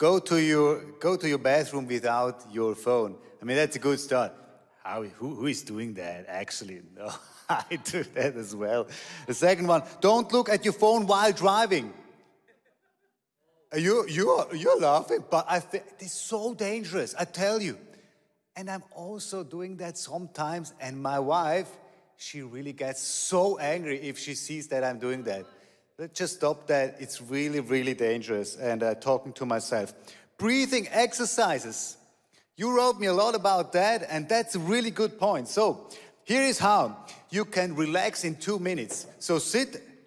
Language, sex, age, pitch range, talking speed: English, male, 30-49, 140-205 Hz, 165 wpm